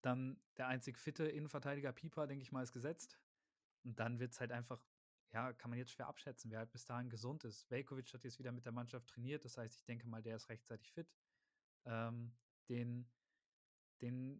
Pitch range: 120-140 Hz